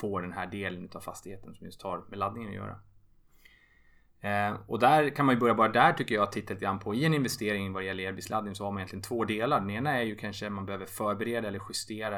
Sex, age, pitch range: male, 20-39, 100-120 Hz